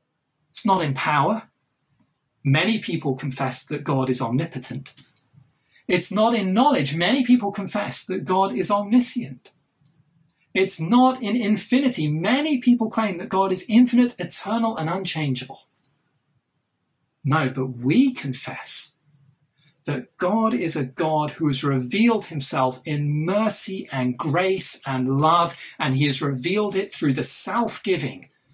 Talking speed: 130 wpm